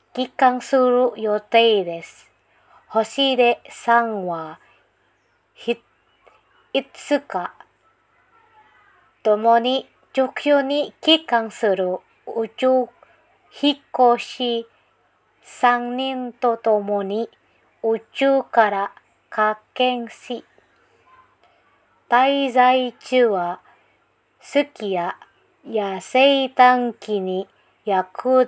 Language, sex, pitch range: Indonesian, female, 215-270 Hz